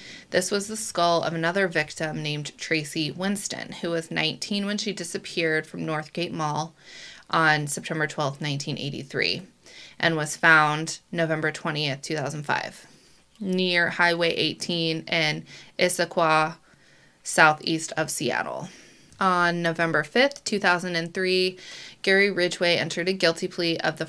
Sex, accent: female, American